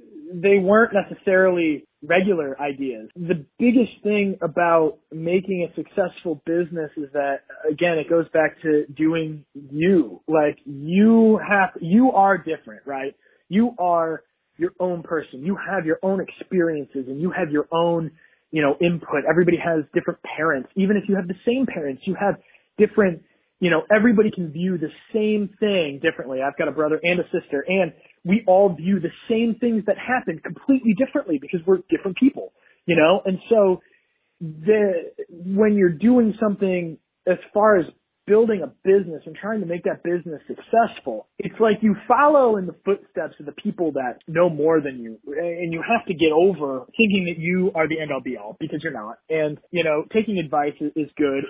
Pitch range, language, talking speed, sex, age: 160-205 Hz, English, 180 wpm, male, 20-39